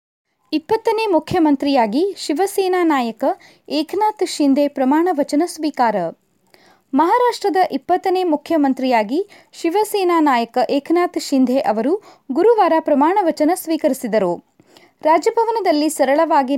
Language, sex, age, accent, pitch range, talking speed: Kannada, female, 20-39, native, 255-350 Hz, 85 wpm